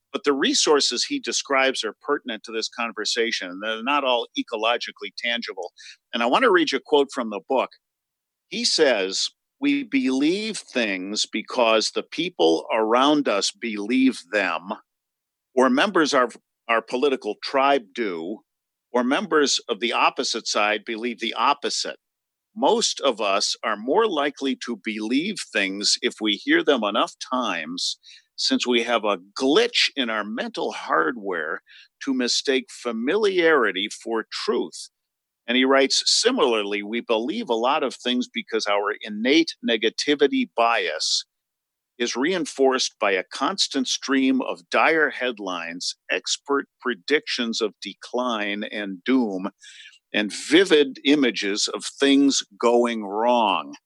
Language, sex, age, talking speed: English, male, 50-69, 135 wpm